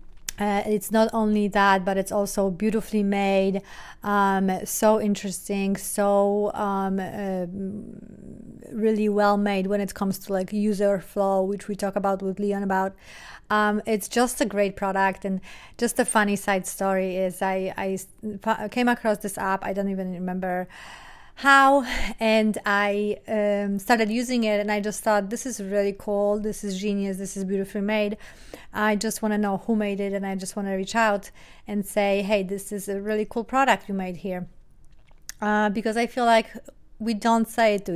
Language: English